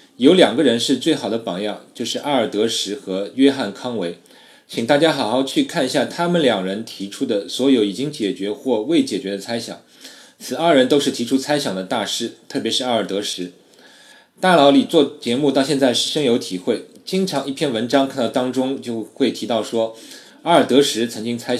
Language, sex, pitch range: Chinese, male, 105-150 Hz